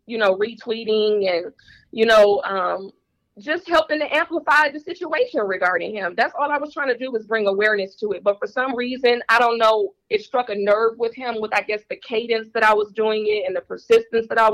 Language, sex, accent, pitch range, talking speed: English, female, American, 215-270 Hz, 225 wpm